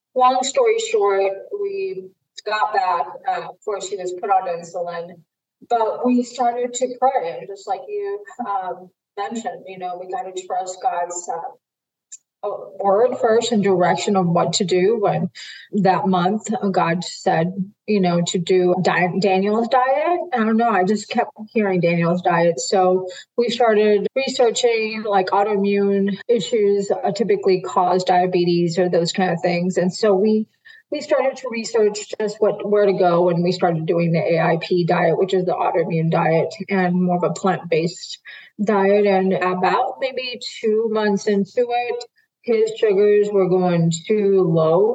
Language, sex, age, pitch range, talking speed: English, female, 30-49, 180-230 Hz, 160 wpm